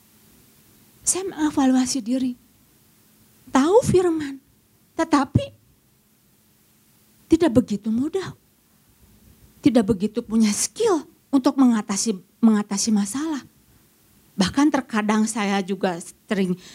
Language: Indonesian